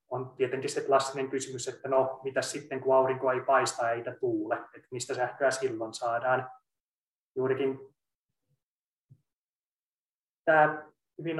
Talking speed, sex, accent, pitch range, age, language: 120 wpm, male, native, 130-145 Hz, 20-39, Finnish